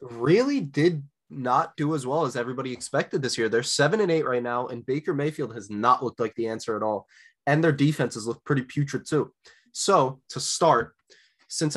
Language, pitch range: English, 120-155 Hz